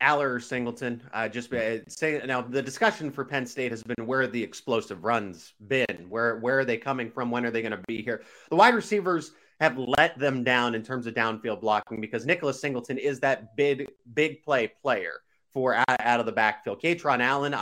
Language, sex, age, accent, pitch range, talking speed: English, male, 30-49, American, 115-140 Hz, 210 wpm